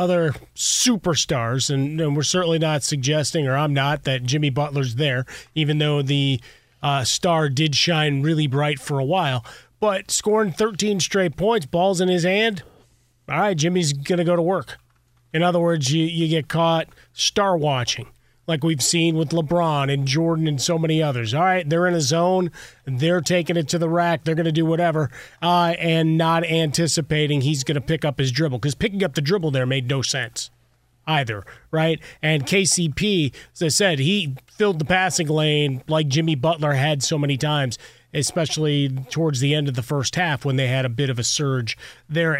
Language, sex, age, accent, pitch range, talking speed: English, male, 30-49, American, 140-175 Hz, 190 wpm